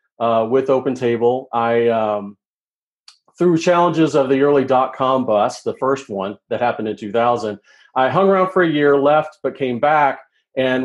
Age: 40-59